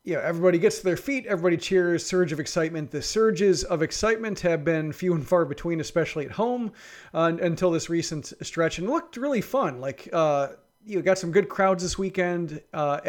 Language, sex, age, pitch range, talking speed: English, male, 40-59, 150-190 Hz, 200 wpm